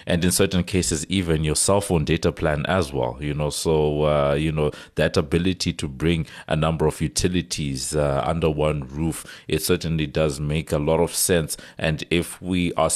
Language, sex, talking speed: English, male, 190 wpm